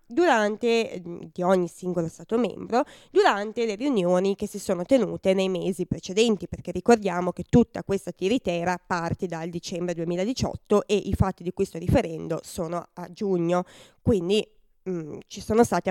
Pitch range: 185-245 Hz